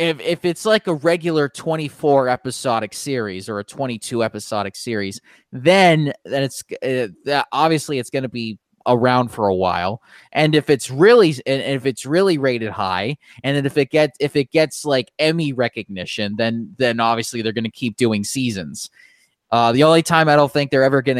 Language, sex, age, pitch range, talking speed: English, male, 20-39, 115-150 Hz, 195 wpm